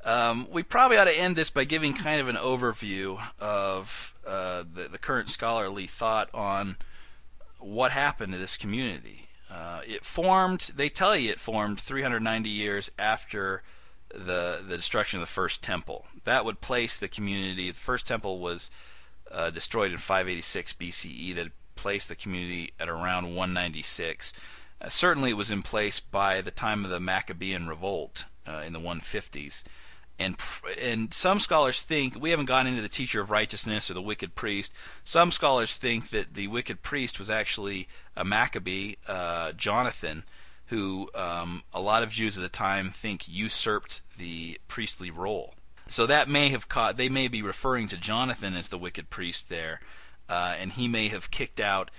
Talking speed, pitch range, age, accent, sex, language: 170 wpm, 90-120 Hz, 40-59, American, male, English